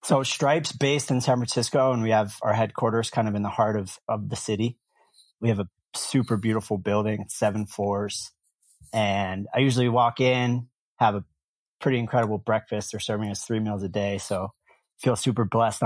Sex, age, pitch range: male, 30-49, 105-125 Hz